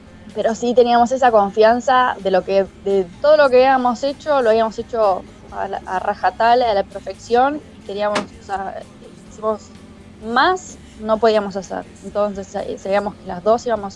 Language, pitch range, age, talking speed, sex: Spanish, 185-215 Hz, 20-39, 165 wpm, female